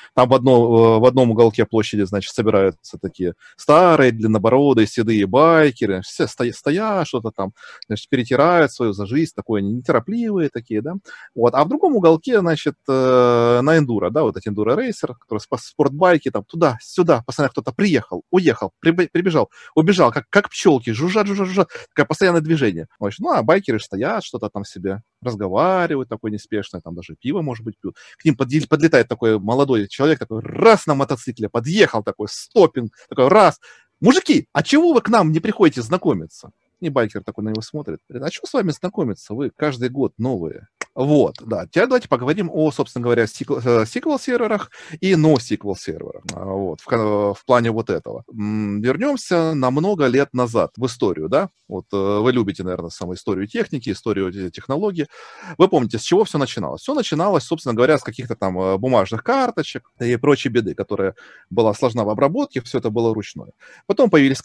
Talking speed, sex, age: 170 wpm, male, 30-49